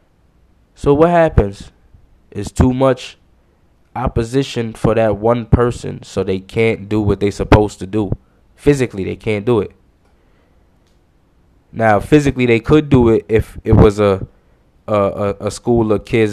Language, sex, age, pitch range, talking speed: English, male, 10-29, 100-125 Hz, 145 wpm